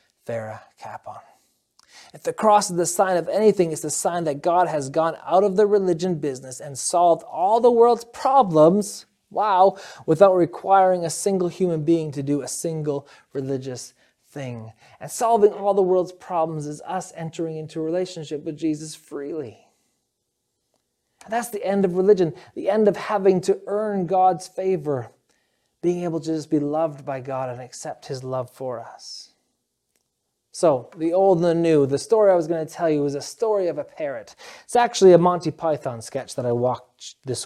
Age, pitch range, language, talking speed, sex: 20-39, 140-190 Hz, English, 185 wpm, male